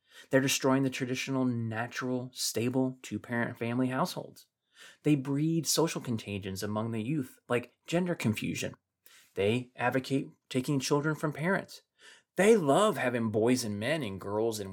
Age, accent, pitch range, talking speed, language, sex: 30-49, American, 115-155 Hz, 140 wpm, English, male